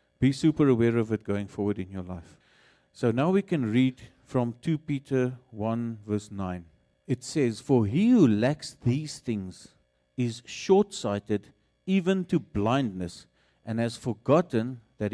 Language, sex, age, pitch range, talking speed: English, male, 50-69, 115-155 Hz, 150 wpm